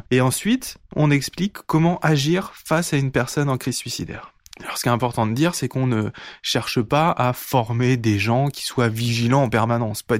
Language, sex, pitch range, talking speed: French, male, 120-150 Hz, 205 wpm